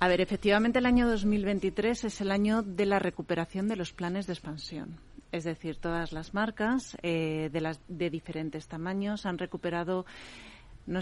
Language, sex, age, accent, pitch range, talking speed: Spanish, female, 40-59, Spanish, 165-195 Hz, 165 wpm